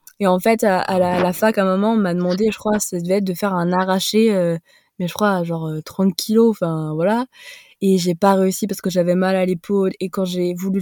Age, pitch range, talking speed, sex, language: 20-39, 190-230 Hz, 265 wpm, female, French